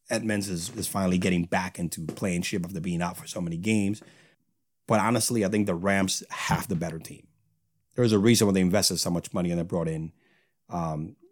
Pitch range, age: 85-110 Hz, 30-49